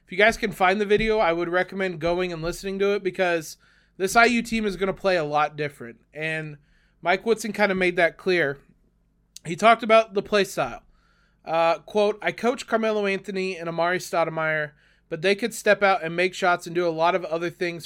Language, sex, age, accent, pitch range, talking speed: English, male, 20-39, American, 170-200 Hz, 215 wpm